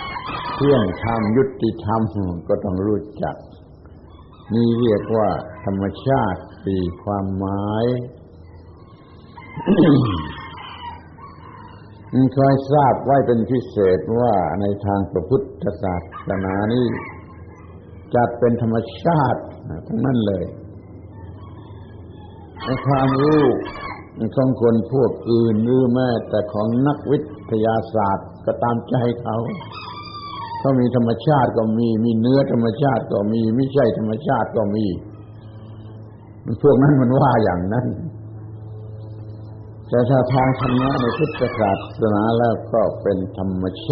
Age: 60-79